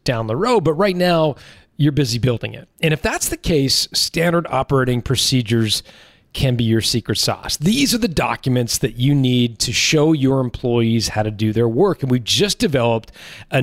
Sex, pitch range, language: male, 115-150 Hz, English